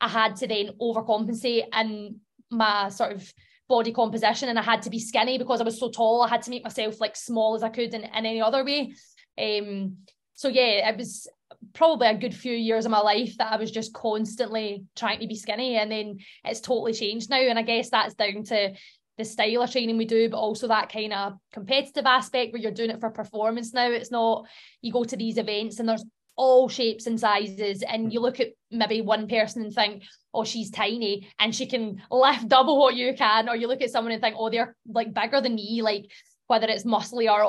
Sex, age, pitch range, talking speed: female, 20-39, 210-240 Hz, 225 wpm